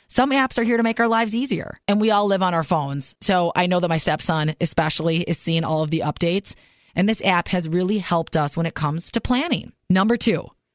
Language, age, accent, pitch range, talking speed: English, 30-49, American, 165-210 Hz, 240 wpm